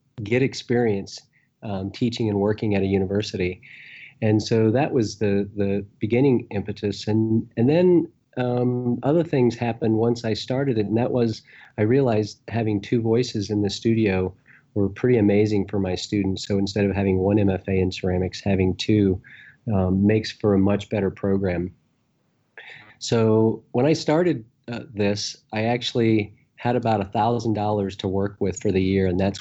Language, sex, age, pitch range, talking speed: English, male, 40-59, 95-115 Hz, 165 wpm